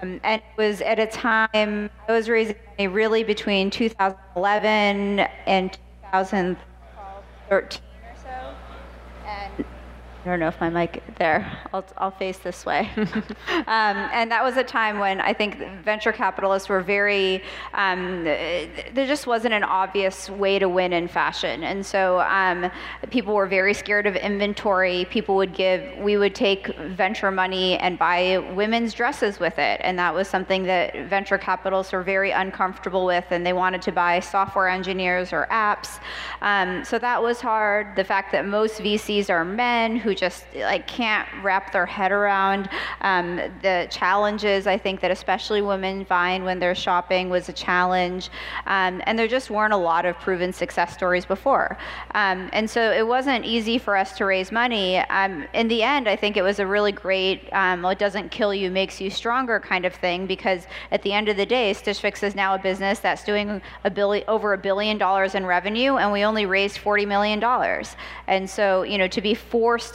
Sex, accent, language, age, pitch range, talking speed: female, American, English, 30-49, 185-215 Hz, 185 wpm